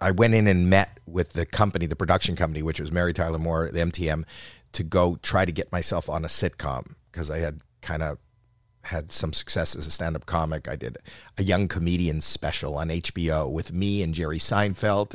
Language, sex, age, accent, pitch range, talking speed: English, male, 50-69, American, 80-100 Hz, 205 wpm